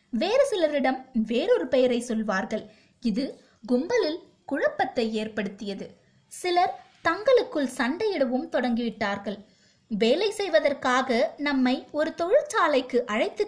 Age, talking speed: 20-39, 60 wpm